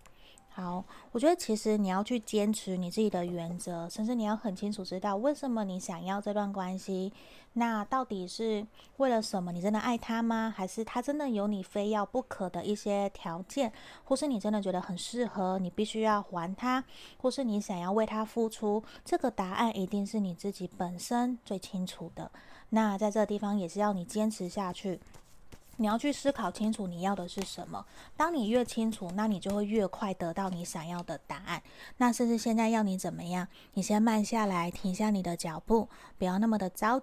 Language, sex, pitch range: Chinese, female, 185-225 Hz